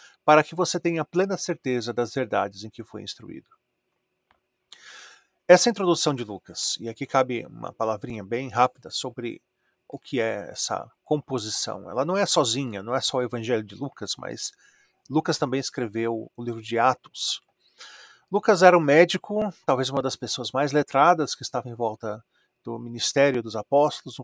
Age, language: 40-59, Portuguese